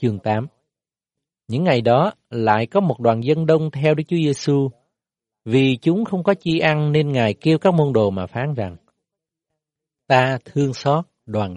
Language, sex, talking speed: Vietnamese, male, 175 wpm